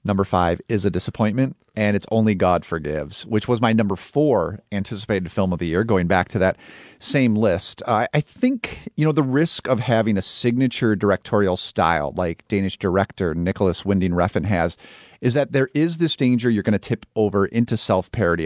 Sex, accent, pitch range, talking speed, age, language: male, American, 90-120 Hz, 190 wpm, 40-59, English